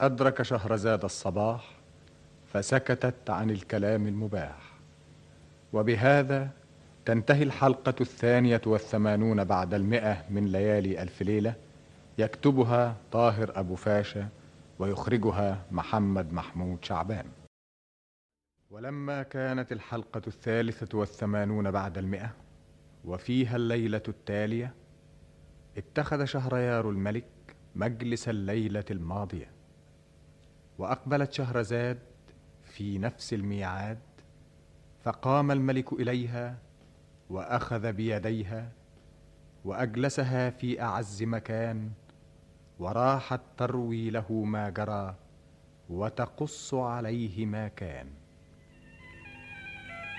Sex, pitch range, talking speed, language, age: male, 85-120 Hz, 80 wpm, Arabic, 40-59